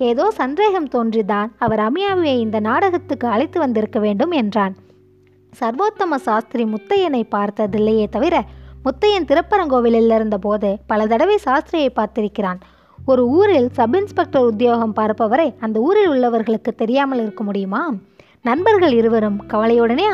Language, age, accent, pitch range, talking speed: Tamil, 20-39, native, 215-295 Hz, 115 wpm